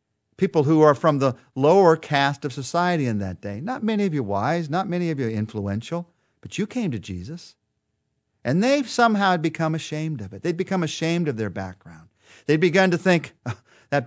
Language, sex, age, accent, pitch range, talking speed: English, male, 50-69, American, 110-160 Hz, 190 wpm